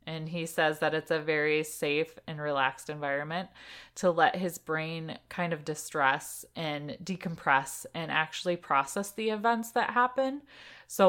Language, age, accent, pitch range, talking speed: English, 20-39, American, 155-190 Hz, 150 wpm